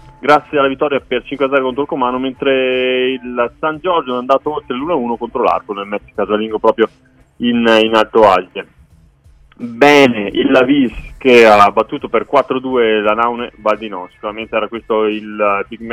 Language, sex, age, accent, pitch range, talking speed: Italian, male, 30-49, native, 115-145 Hz, 175 wpm